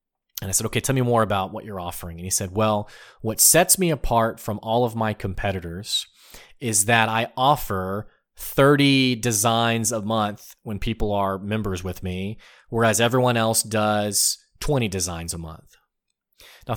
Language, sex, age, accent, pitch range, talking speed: English, male, 30-49, American, 105-140 Hz, 170 wpm